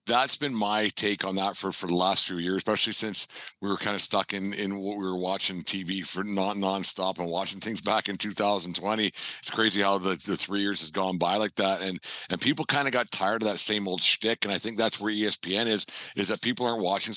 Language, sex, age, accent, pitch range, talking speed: English, male, 50-69, American, 95-110 Hz, 250 wpm